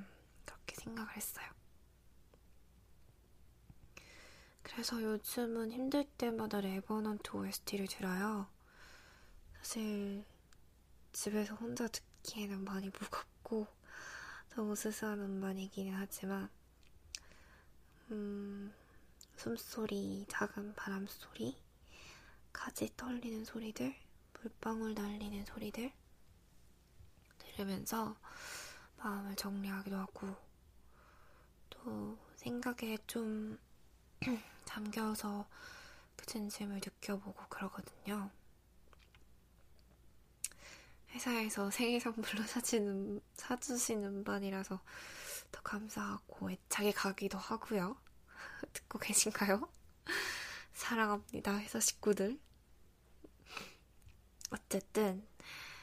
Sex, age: female, 20-39